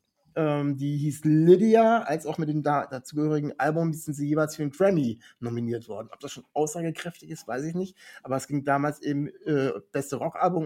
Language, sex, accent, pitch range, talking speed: German, male, German, 140-180 Hz, 185 wpm